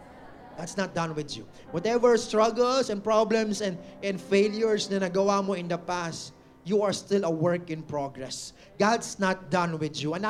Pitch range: 180-225 Hz